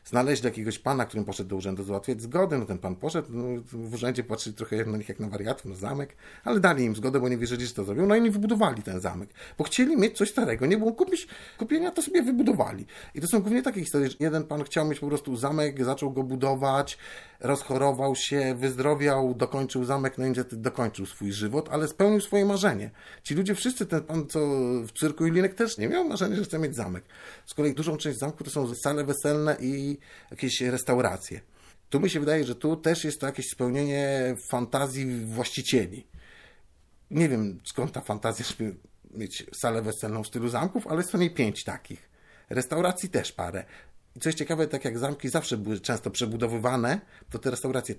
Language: Polish